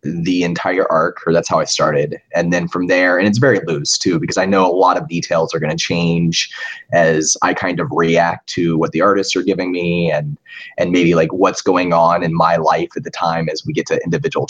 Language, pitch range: English, 85-95 Hz